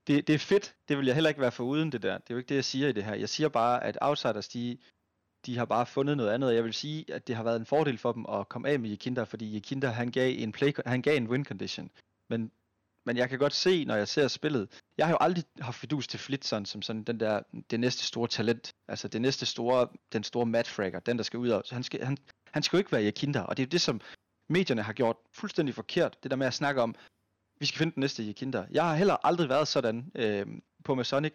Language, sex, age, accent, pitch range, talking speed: Danish, male, 30-49, native, 115-140 Hz, 275 wpm